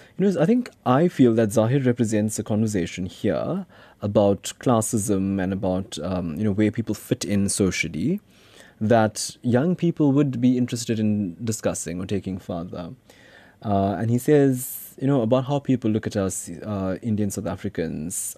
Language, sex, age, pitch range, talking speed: English, male, 20-39, 95-115 Hz, 155 wpm